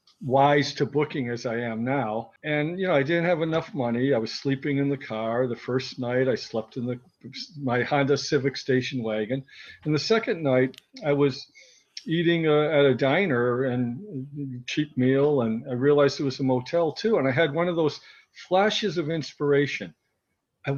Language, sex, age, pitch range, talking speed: English, male, 50-69, 130-155 Hz, 185 wpm